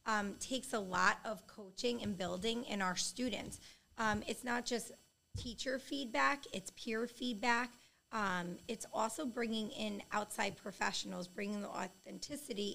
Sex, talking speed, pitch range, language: female, 140 wpm, 190-230 Hz, English